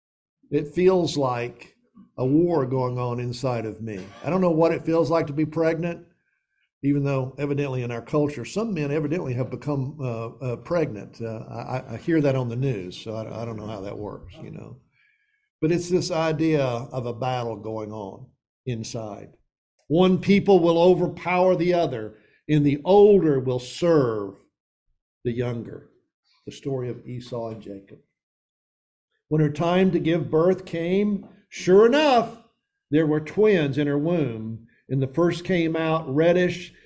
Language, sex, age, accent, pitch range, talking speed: English, male, 50-69, American, 120-170 Hz, 165 wpm